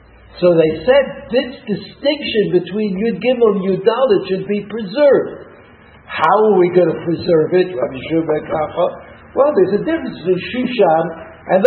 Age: 60-79